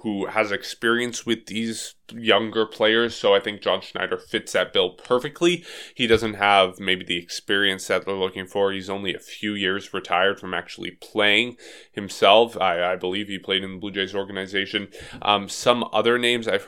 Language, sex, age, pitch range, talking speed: English, male, 20-39, 95-115 Hz, 185 wpm